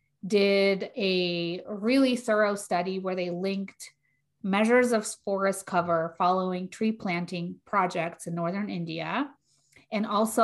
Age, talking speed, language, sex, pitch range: 30-49, 120 wpm, English, female, 175-210 Hz